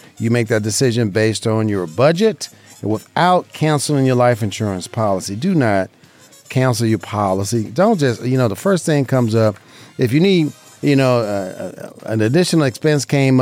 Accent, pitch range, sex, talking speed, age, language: American, 115-155 Hz, male, 175 wpm, 40-59, English